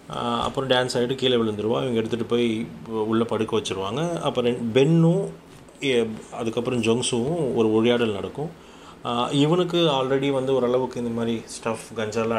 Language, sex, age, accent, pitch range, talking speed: Tamil, male, 30-49, native, 105-120 Hz, 125 wpm